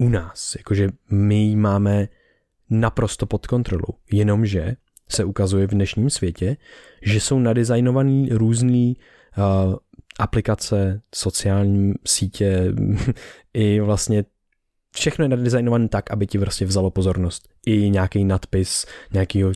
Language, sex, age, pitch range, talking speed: Czech, male, 20-39, 100-115 Hz, 120 wpm